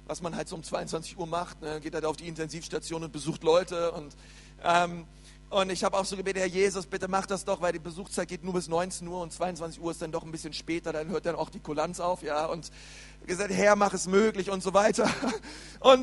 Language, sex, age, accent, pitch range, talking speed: German, male, 40-59, German, 160-195 Hz, 240 wpm